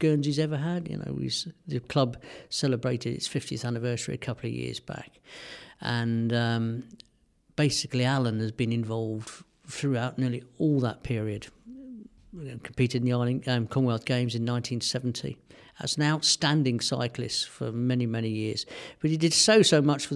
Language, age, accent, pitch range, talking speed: English, 50-69, British, 120-145 Hz, 150 wpm